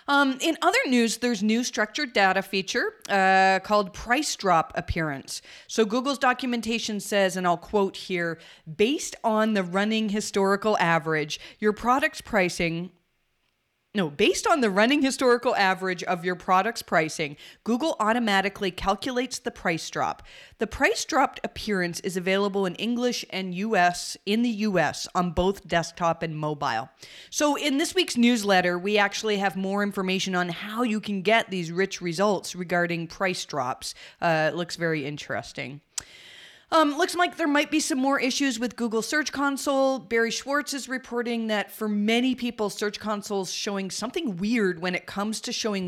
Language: English